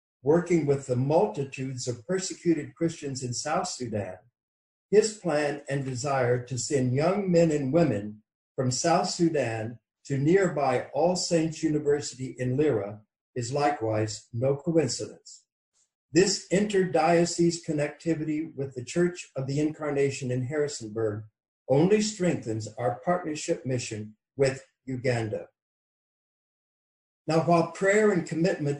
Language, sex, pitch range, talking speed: English, male, 125-165 Hz, 120 wpm